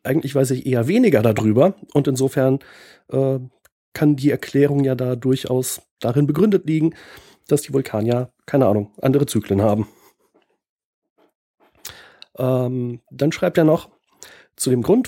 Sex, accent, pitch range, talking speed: male, German, 120-150 Hz, 140 wpm